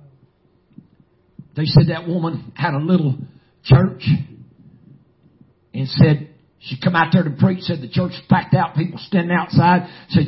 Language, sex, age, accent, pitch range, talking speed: English, male, 50-69, American, 145-200 Hz, 150 wpm